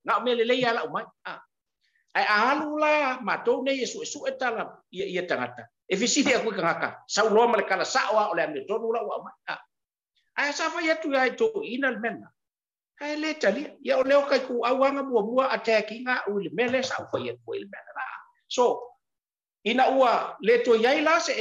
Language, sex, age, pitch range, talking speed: English, male, 50-69, 210-300 Hz, 55 wpm